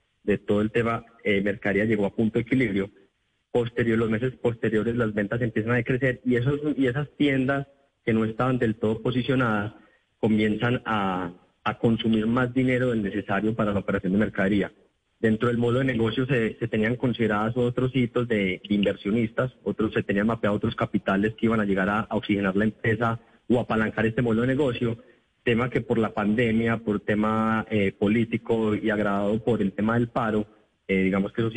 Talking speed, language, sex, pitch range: 180 wpm, Spanish, male, 105-120 Hz